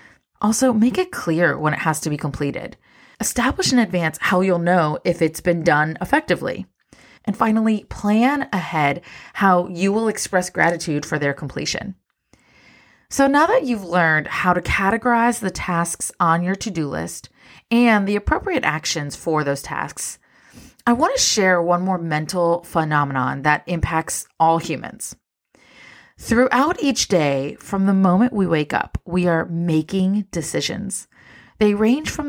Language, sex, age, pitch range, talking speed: English, female, 30-49, 160-215 Hz, 150 wpm